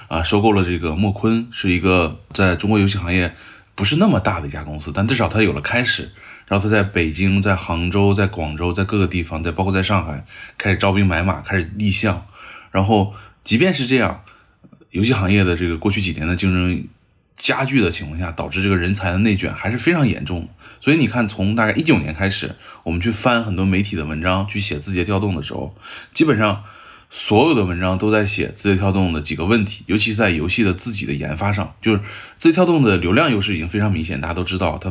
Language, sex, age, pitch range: Chinese, male, 20-39, 90-105 Hz